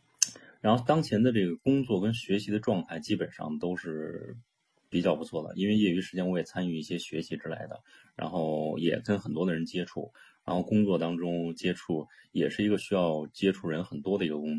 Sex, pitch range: male, 80-100 Hz